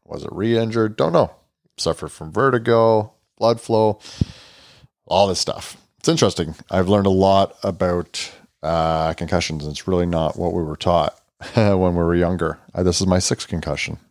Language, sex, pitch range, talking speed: English, male, 90-105 Hz, 165 wpm